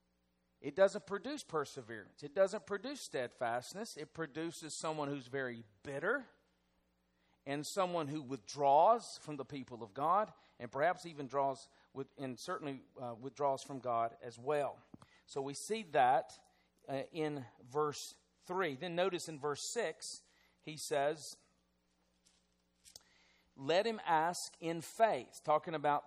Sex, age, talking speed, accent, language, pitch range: male, 40-59, 135 wpm, American, English, 125-160 Hz